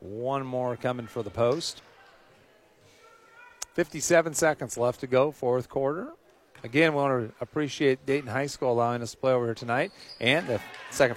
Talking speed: 165 wpm